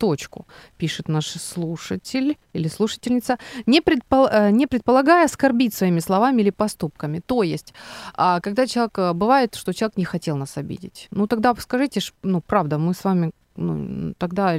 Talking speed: 140 wpm